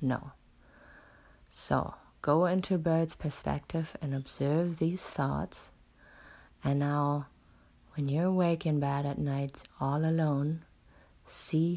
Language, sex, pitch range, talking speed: English, female, 140-165 Hz, 110 wpm